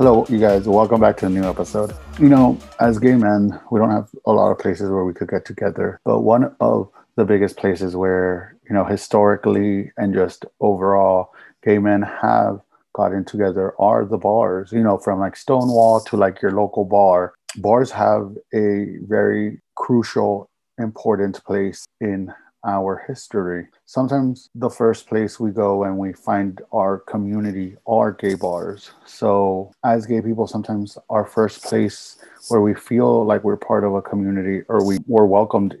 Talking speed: 170 wpm